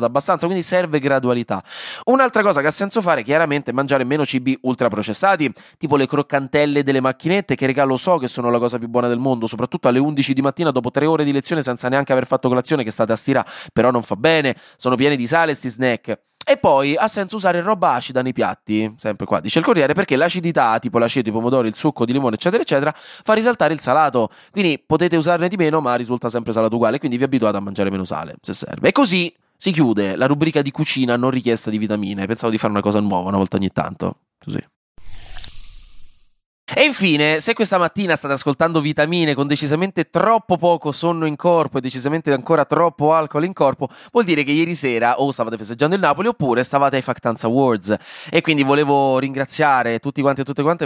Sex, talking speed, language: male, 210 wpm, Italian